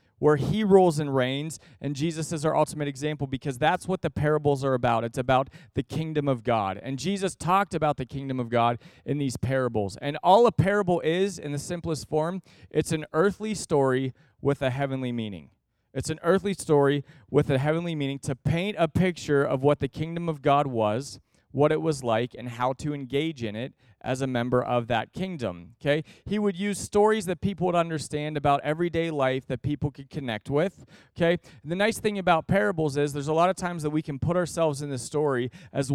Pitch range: 130-165 Hz